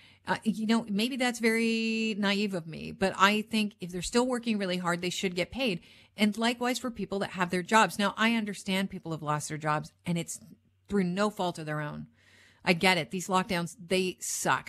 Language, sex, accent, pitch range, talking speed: English, female, American, 160-225 Hz, 215 wpm